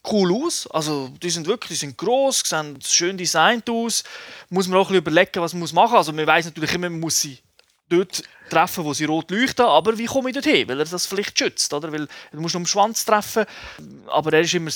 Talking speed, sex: 235 wpm, male